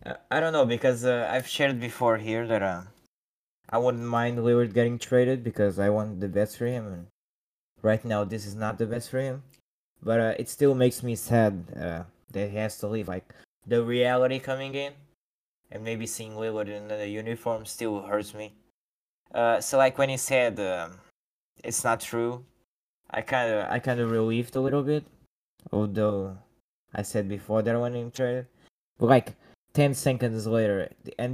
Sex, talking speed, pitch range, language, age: male, 190 wpm, 110-130 Hz, English, 10-29